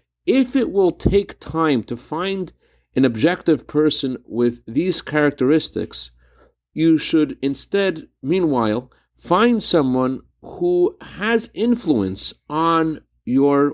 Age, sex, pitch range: 50-69, male, 120-165 Hz